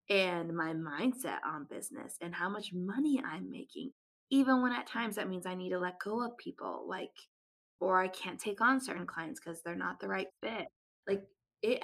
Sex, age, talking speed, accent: female, 20-39, 205 wpm, American